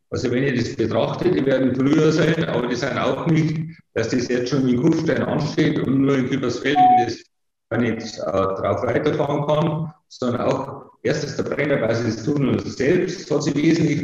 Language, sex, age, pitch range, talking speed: German, male, 50-69, 115-140 Hz, 185 wpm